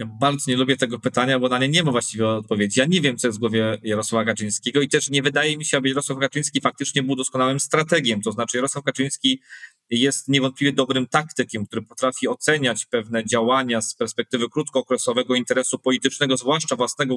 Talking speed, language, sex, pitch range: 190 wpm, Polish, male, 130-150 Hz